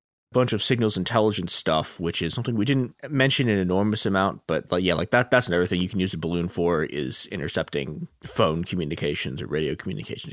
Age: 20-39